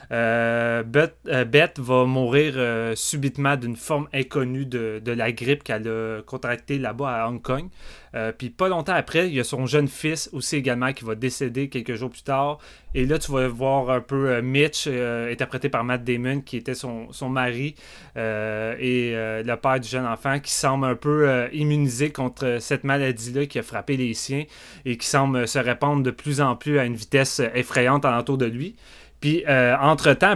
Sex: male